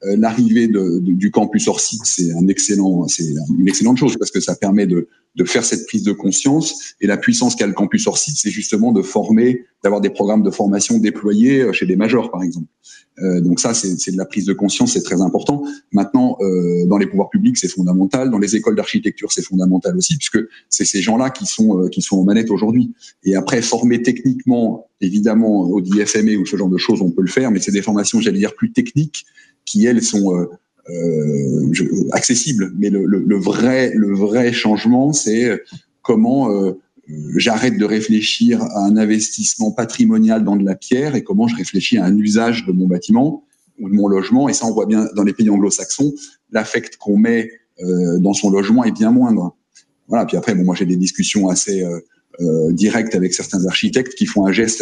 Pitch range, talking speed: 95-150 Hz, 200 wpm